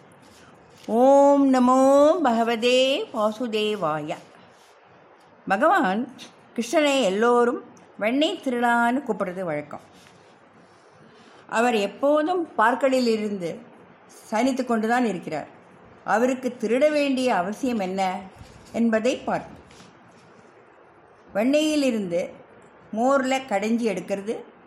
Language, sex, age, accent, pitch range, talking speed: English, female, 50-69, Indian, 210-265 Hz, 85 wpm